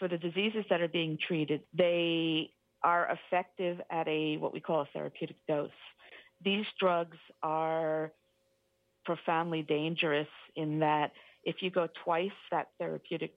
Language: English